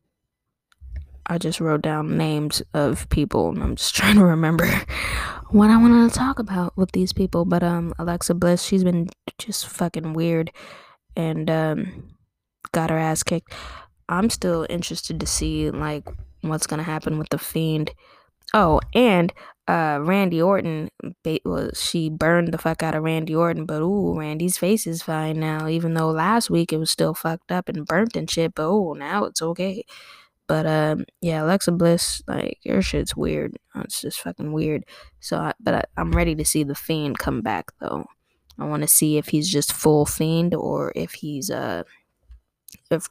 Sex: female